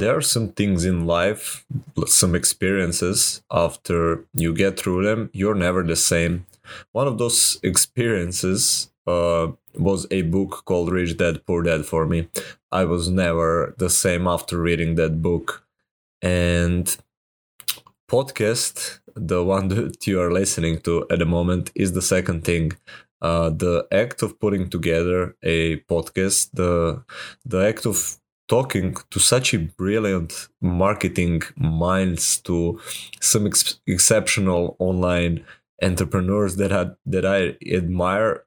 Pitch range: 85-95 Hz